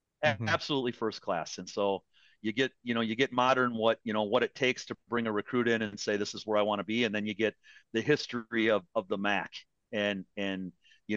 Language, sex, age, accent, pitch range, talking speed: English, male, 40-59, American, 110-135 Hz, 240 wpm